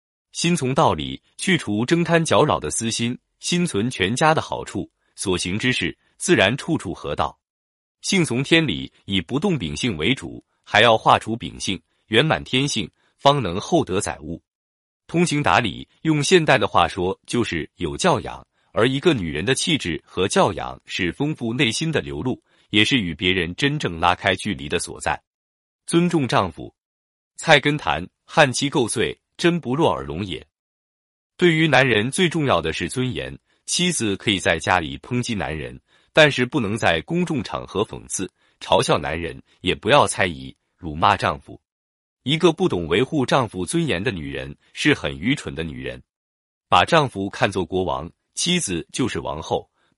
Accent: native